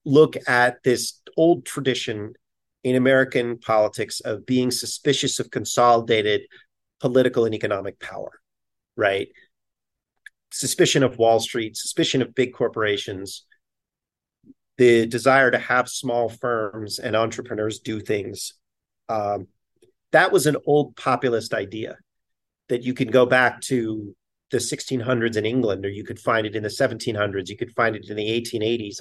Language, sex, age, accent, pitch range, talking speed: English, male, 40-59, American, 110-130 Hz, 140 wpm